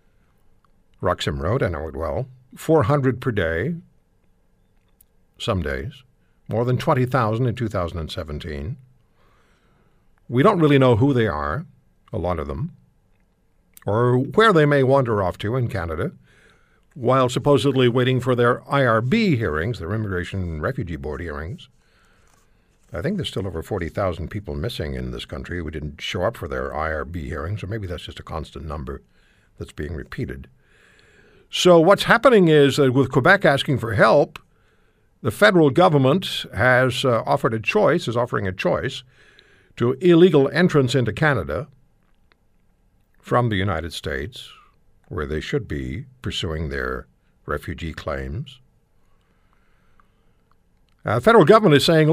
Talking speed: 140 wpm